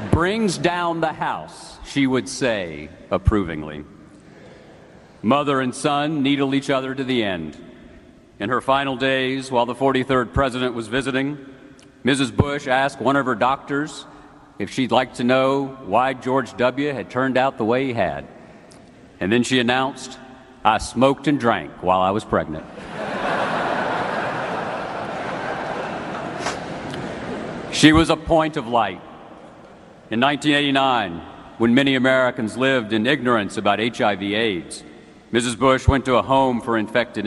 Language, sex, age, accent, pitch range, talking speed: English, male, 50-69, American, 110-140 Hz, 140 wpm